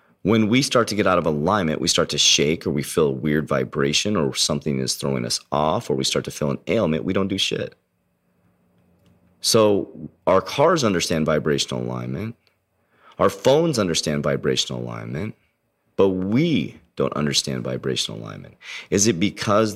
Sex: male